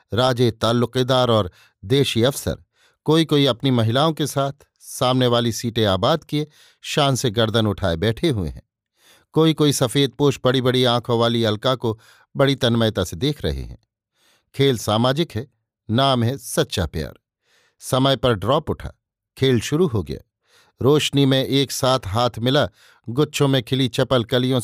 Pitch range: 110-140 Hz